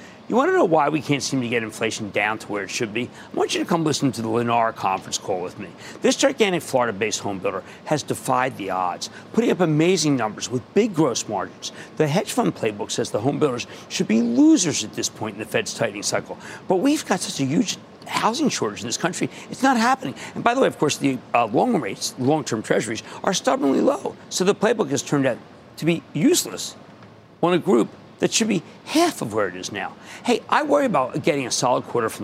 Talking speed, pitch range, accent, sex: 235 wpm, 135-225 Hz, American, male